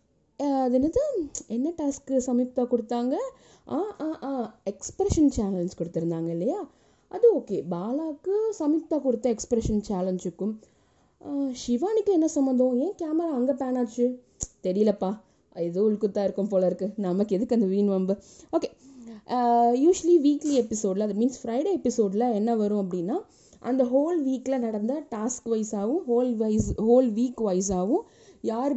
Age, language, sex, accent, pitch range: 20-39, Tamil, female, native, 200-270 Hz